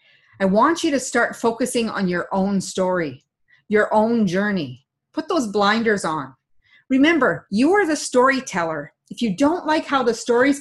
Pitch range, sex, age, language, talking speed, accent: 185-270 Hz, female, 30-49, English, 165 wpm, American